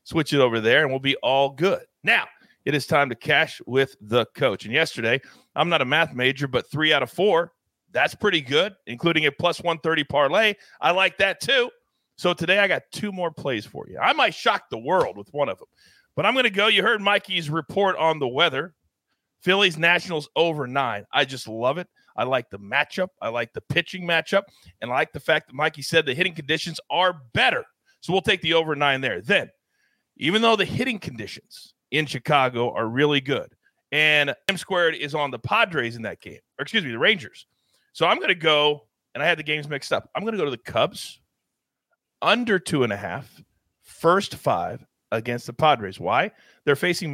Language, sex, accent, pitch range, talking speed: English, male, American, 135-180 Hz, 210 wpm